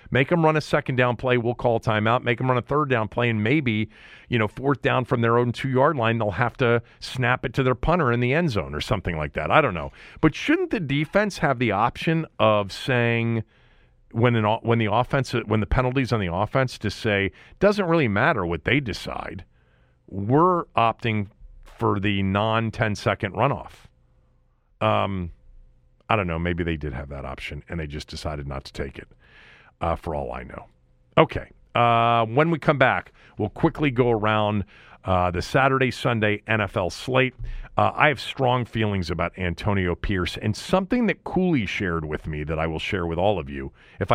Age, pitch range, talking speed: 40-59, 90-130 Hz, 195 wpm